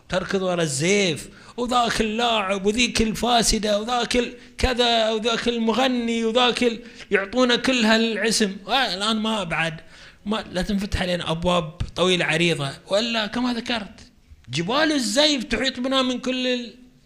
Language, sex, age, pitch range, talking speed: Arabic, male, 30-49, 170-235 Hz, 115 wpm